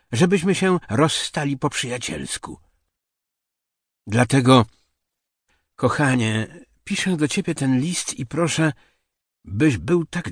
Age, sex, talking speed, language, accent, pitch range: 60-79, male, 100 wpm, Polish, native, 115-155 Hz